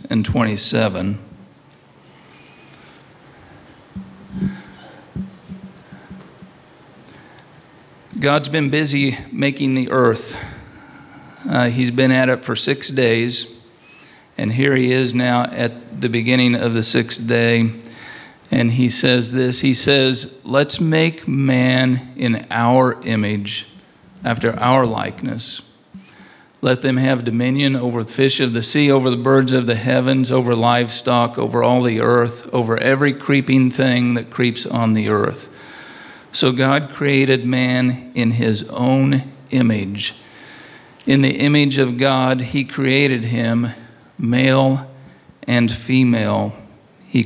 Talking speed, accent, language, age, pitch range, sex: 120 wpm, American, English, 50-69, 115-135 Hz, male